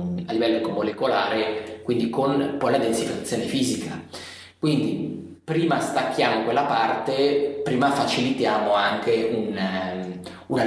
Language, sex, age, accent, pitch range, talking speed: Italian, male, 30-49, native, 100-120 Hz, 105 wpm